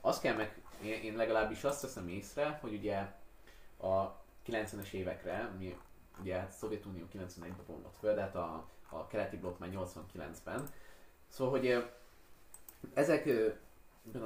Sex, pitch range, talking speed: male, 100-140 Hz, 120 wpm